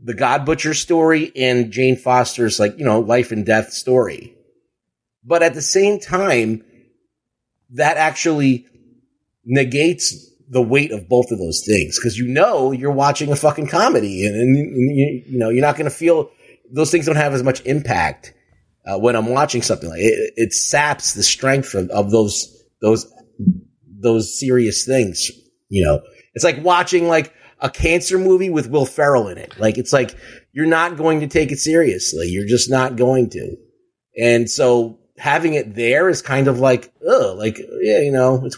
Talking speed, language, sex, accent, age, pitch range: 180 wpm, English, male, American, 30-49, 120-160 Hz